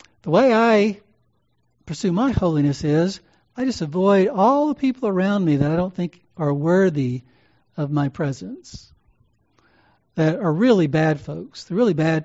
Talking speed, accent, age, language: 155 wpm, American, 60-79, English